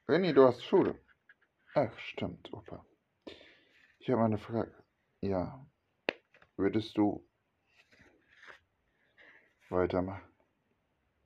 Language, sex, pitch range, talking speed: German, male, 110-155 Hz, 80 wpm